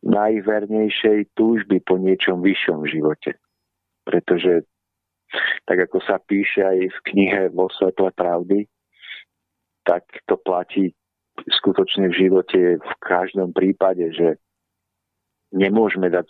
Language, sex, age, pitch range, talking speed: Slovak, male, 50-69, 90-95 Hz, 105 wpm